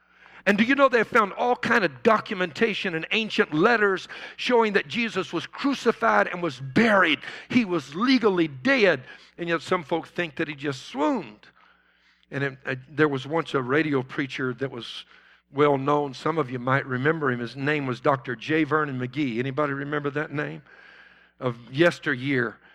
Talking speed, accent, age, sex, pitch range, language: 175 wpm, American, 60-79, male, 145-195 Hz, English